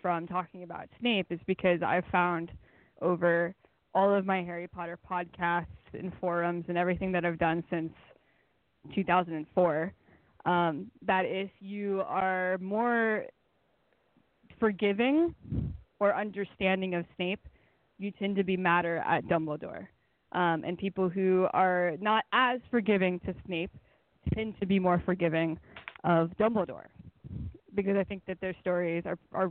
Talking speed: 135 wpm